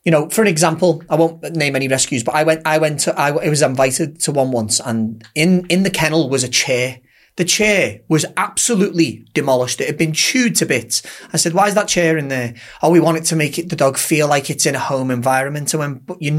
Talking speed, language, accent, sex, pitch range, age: 250 wpm, English, British, male, 155-220 Hz, 30-49